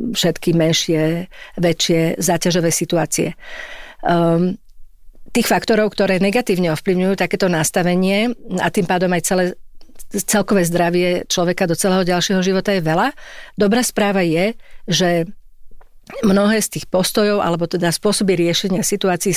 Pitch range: 170-205 Hz